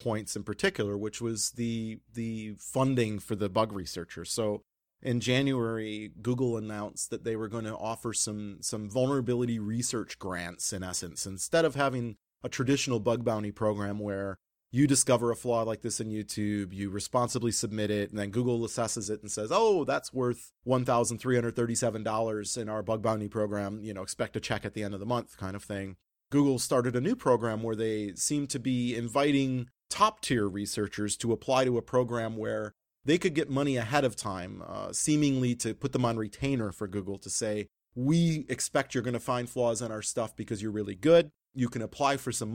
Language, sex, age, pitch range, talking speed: English, male, 30-49, 105-125 Hz, 195 wpm